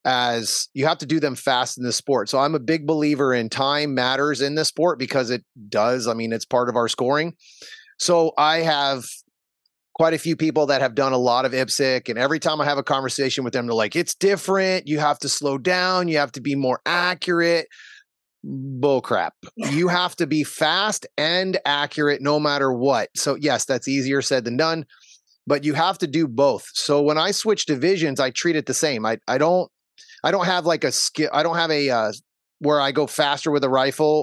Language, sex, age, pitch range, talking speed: English, male, 30-49, 125-160 Hz, 220 wpm